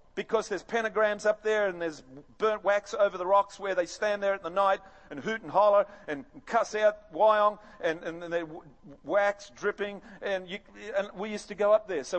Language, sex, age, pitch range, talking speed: English, male, 40-59, 170-215 Hz, 215 wpm